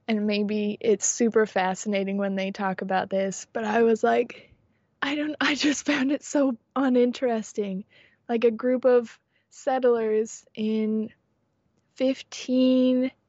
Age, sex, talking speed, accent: 20-39, female, 130 wpm, American